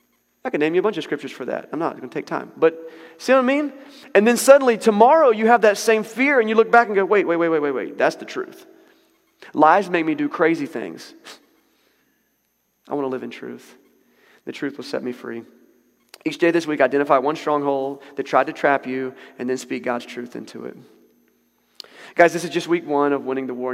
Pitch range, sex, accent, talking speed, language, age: 125-165 Hz, male, American, 230 wpm, English, 30-49